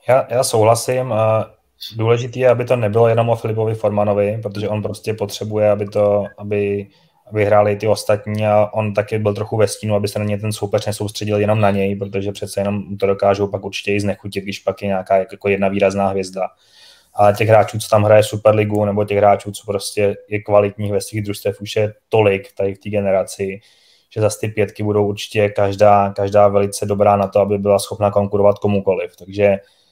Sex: male